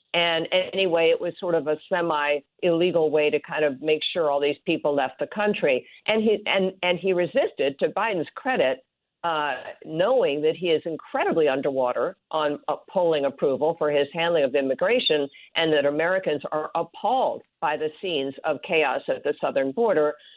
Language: English